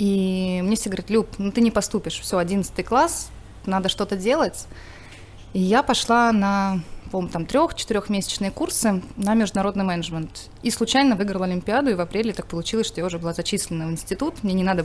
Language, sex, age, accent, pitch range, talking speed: Russian, female, 20-39, native, 165-220 Hz, 180 wpm